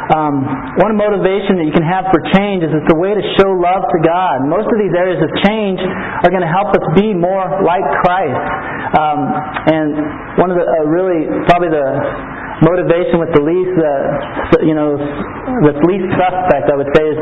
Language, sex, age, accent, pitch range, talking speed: English, male, 40-59, American, 150-185 Hz, 195 wpm